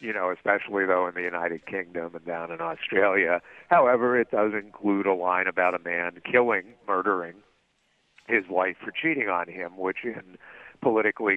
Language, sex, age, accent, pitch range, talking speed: English, male, 50-69, American, 80-95 Hz, 170 wpm